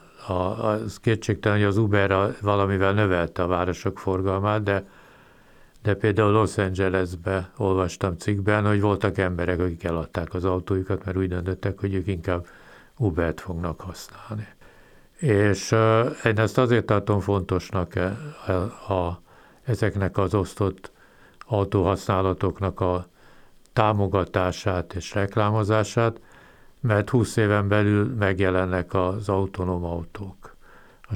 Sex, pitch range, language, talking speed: male, 90-105 Hz, Hungarian, 120 wpm